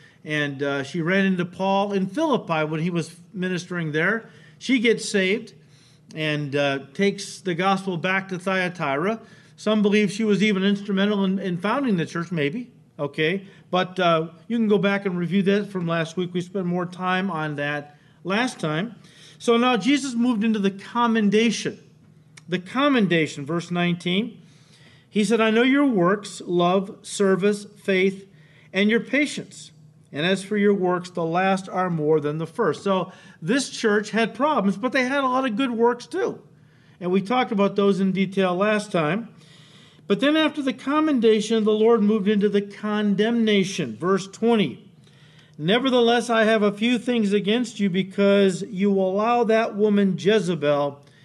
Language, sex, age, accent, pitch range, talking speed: English, male, 40-59, American, 165-215 Hz, 165 wpm